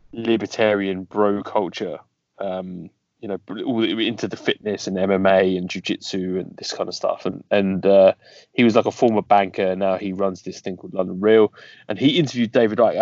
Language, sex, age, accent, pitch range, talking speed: English, male, 30-49, British, 95-130 Hz, 185 wpm